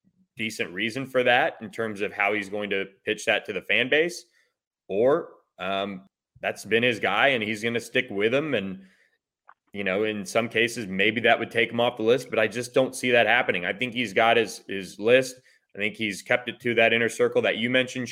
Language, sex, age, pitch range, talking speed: English, male, 20-39, 100-125 Hz, 230 wpm